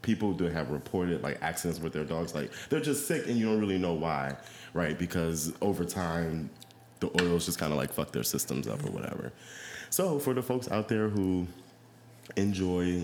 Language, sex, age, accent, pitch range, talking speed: English, male, 20-39, American, 80-110 Hz, 200 wpm